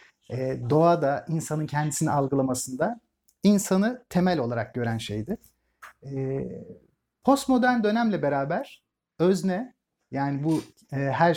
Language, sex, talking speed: Turkish, male, 90 wpm